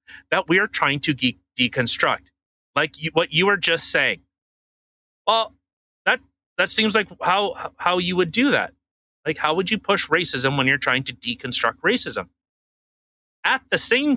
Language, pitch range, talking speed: English, 130-195 Hz, 170 wpm